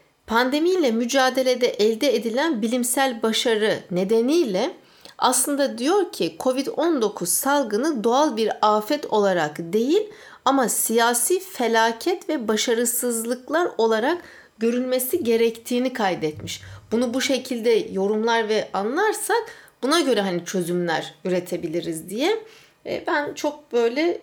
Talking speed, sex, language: 100 wpm, female, English